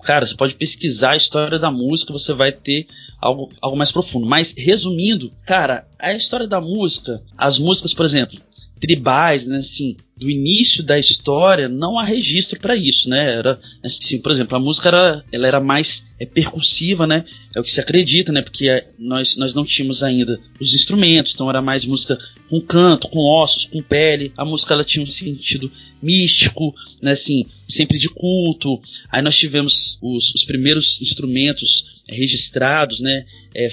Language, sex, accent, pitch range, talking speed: Portuguese, male, Brazilian, 130-155 Hz, 175 wpm